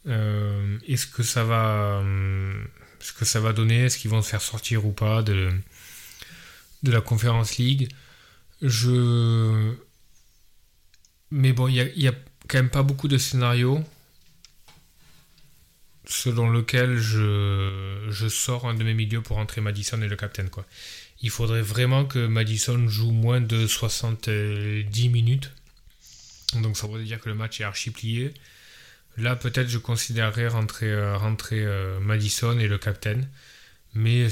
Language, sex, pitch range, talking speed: French, male, 105-120 Hz, 145 wpm